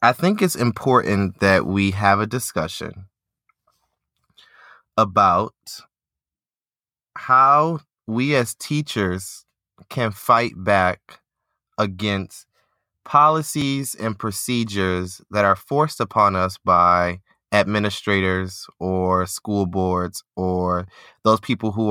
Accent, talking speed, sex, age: American, 95 wpm, male, 20-39